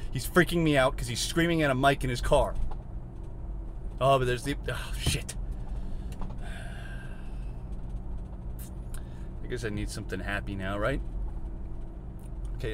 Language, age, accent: English, 30-49, American